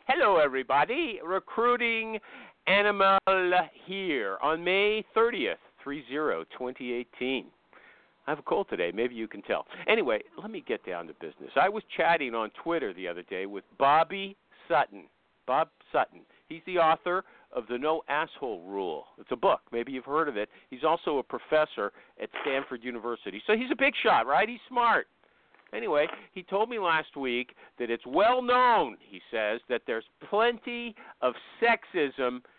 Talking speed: 165 wpm